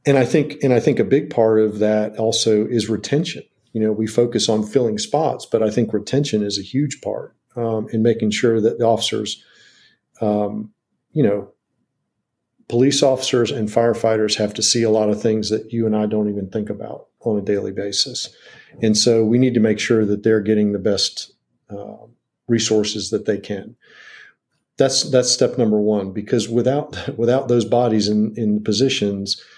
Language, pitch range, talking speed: English, 105-120 Hz, 185 wpm